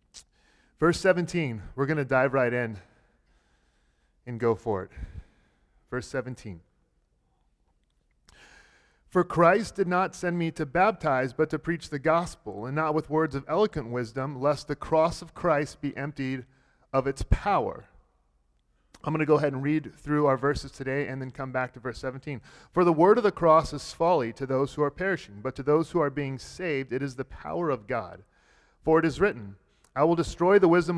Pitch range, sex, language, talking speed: 130-170 Hz, male, English, 190 wpm